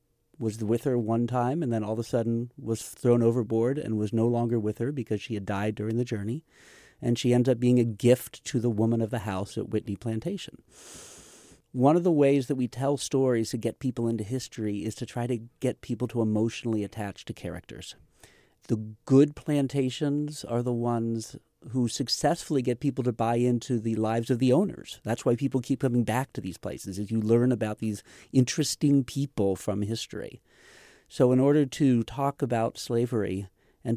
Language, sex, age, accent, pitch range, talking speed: English, male, 40-59, American, 110-130 Hz, 195 wpm